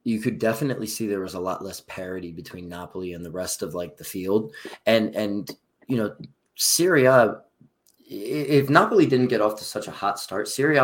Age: 20-39